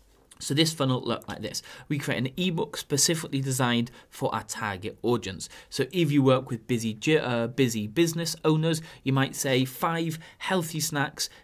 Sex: male